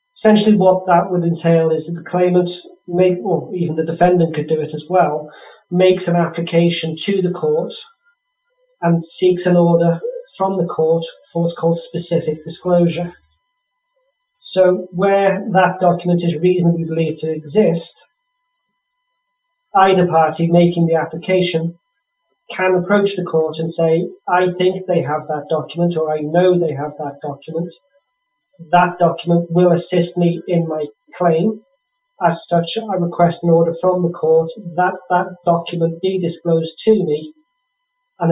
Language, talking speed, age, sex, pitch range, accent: English, 145 wpm, 40-59, male, 165-190 Hz, British